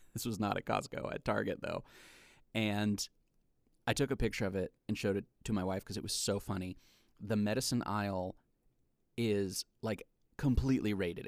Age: 30-49